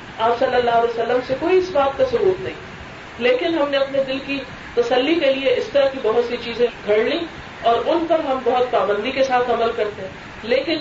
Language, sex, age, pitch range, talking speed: Urdu, female, 40-59, 215-340 Hz, 230 wpm